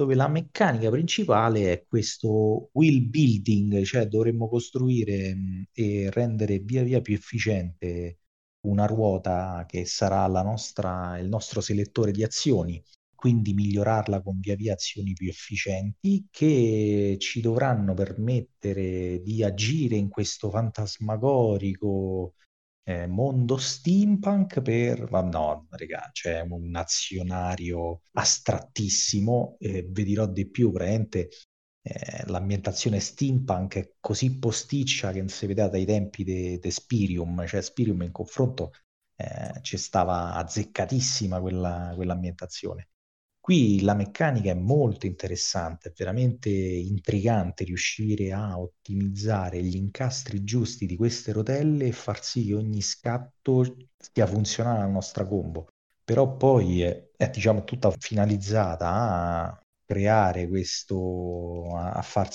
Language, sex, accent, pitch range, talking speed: Italian, male, native, 95-115 Hz, 125 wpm